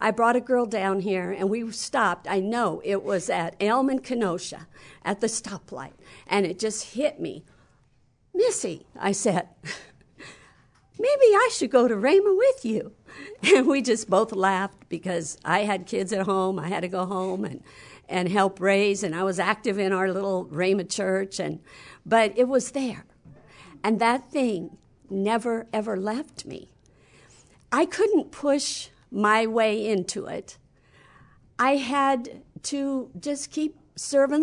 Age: 50-69